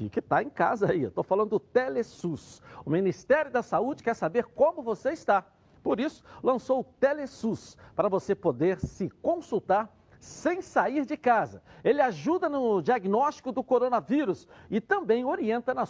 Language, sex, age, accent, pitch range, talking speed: Portuguese, male, 60-79, Brazilian, 190-285 Hz, 160 wpm